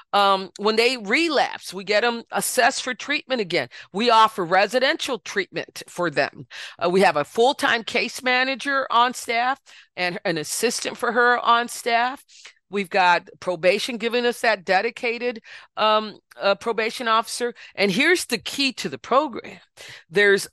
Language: English